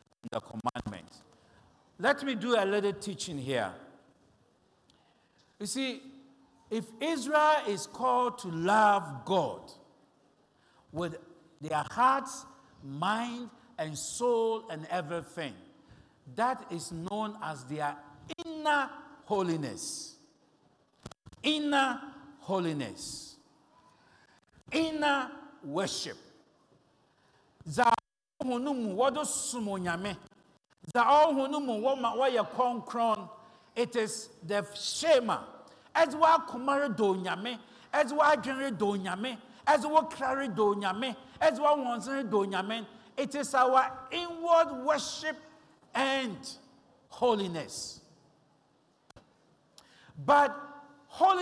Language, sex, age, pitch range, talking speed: English, male, 60-79, 205-290 Hz, 70 wpm